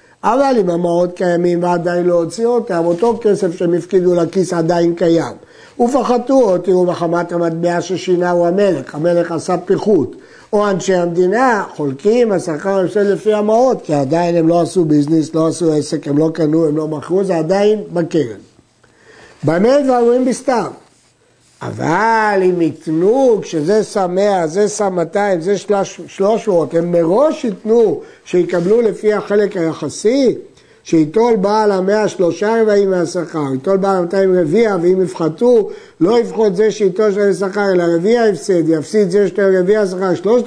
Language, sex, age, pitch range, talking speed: Hebrew, male, 50-69, 170-215 Hz, 145 wpm